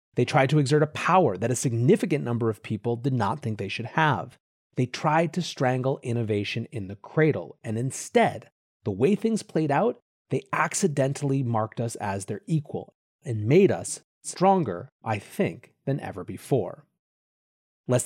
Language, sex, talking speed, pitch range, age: English, male, 165 wpm, 115-155 Hz, 30-49